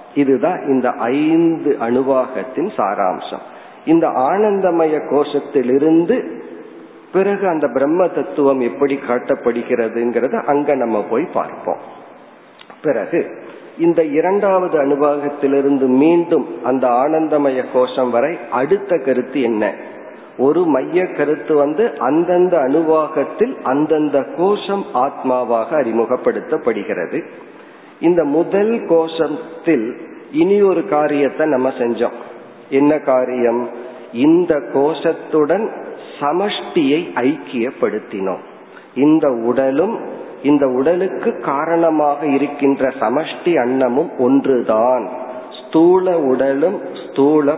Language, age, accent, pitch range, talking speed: Tamil, 50-69, native, 130-170 Hz, 80 wpm